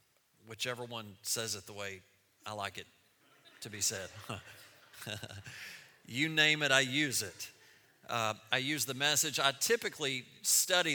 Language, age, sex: English, 40-59, male